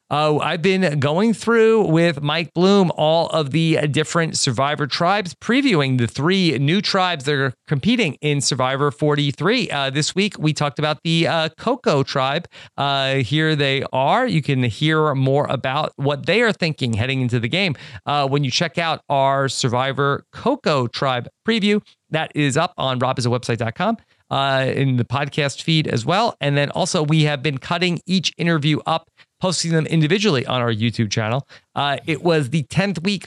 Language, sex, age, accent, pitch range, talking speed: English, male, 40-59, American, 135-170 Hz, 175 wpm